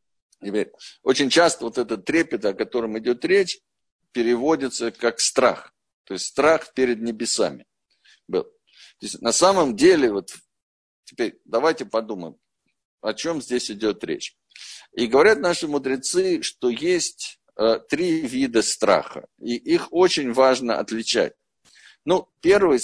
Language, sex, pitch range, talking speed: Russian, male, 125-185 Hz, 120 wpm